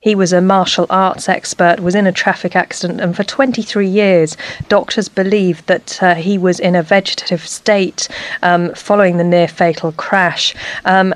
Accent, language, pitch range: British, English, 175-200 Hz